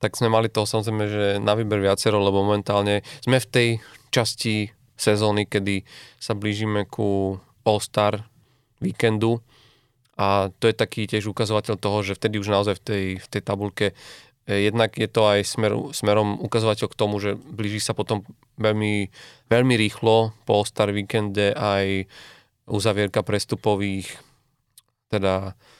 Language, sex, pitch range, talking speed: Slovak, male, 100-115 Hz, 140 wpm